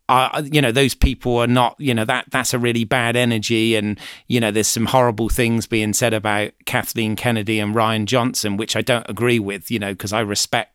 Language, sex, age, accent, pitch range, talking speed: English, male, 40-59, British, 115-140 Hz, 225 wpm